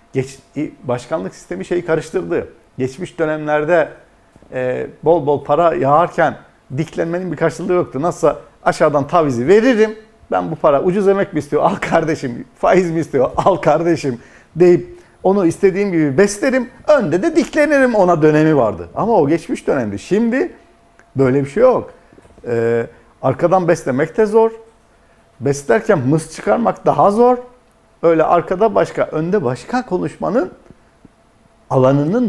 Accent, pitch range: native, 130-180 Hz